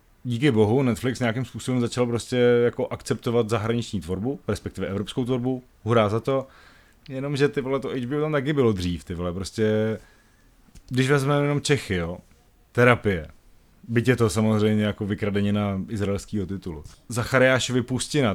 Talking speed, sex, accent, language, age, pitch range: 145 wpm, male, native, Czech, 30-49, 105-130 Hz